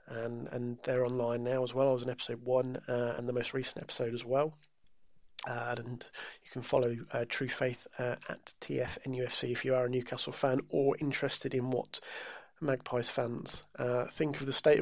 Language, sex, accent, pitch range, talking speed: English, male, British, 125-140 Hz, 195 wpm